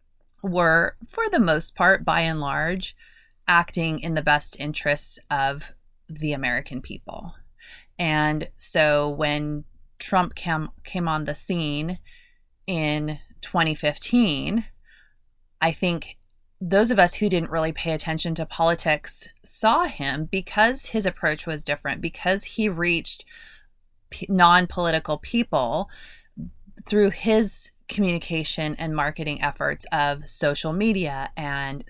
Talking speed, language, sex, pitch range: 120 wpm, English, female, 155-185 Hz